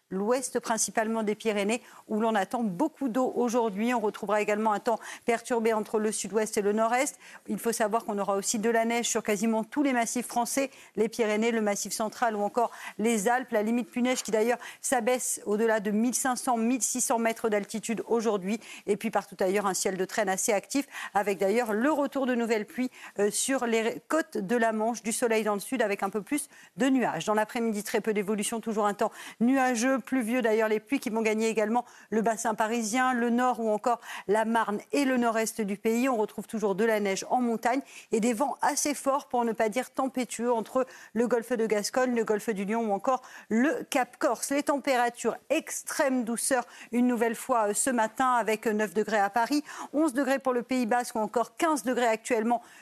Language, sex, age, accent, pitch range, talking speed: French, female, 50-69, French, 215-250 Hz, 205 wpm